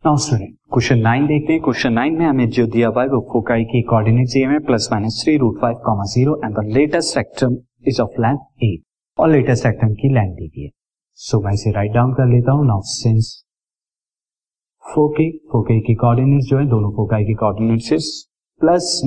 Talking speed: 40 wpm